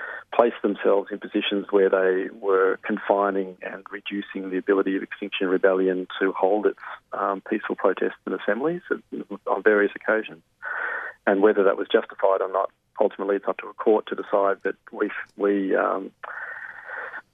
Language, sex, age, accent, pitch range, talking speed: English, male, 40-59, Australian, 95-100 Hz, 155 wpm